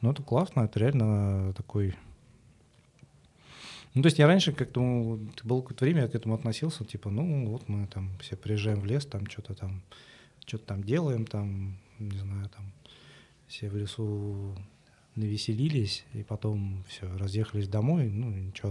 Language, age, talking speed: Russian, 20-39, 155 wpm